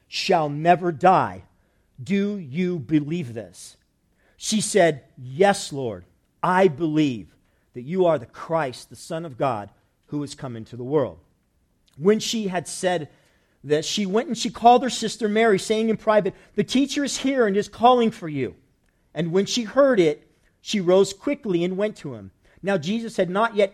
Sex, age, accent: male, 50-69, American